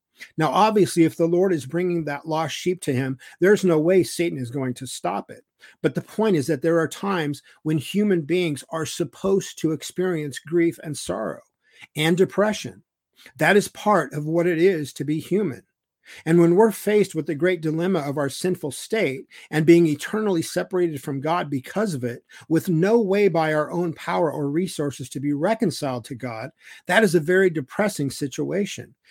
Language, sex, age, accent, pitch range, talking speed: English, male, 50-69, American, 135-170 Hz, 190 wpm